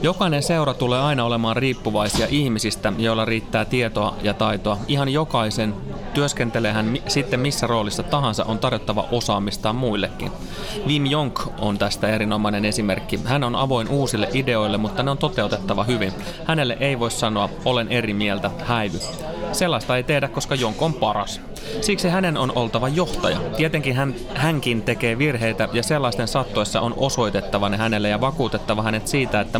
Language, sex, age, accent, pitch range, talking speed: Finnish, male, 30-49, native, 105-140 Hz, 150 wpm